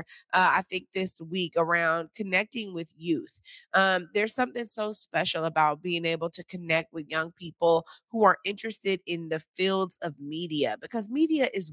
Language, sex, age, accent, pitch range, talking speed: English, female, 20-39, American, 175-210 Hz, 170 wpm